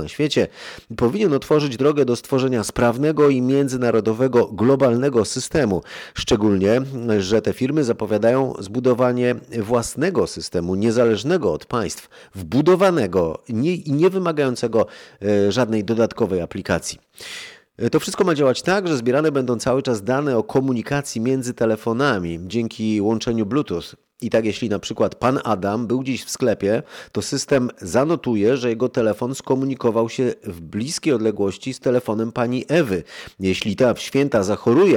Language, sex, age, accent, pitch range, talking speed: Polish, male, 30-49, native, 105-135 Hz, 135 wpm